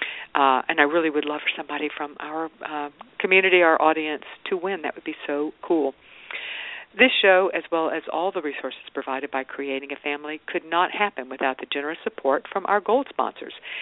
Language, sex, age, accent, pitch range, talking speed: English, female, 50-69, American, 145-195 Hz, 195 wpm